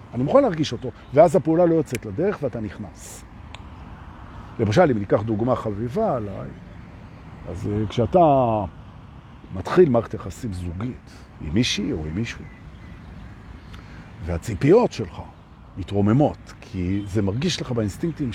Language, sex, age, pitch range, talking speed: Hebrew, male, 50-69, 100-150 Hz, 100 wpm